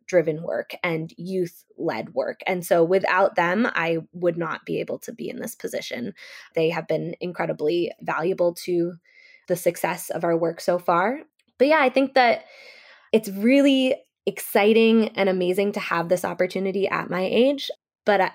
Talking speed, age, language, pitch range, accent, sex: 165 wpm, 20-39, English, 180-220 Hz, American, female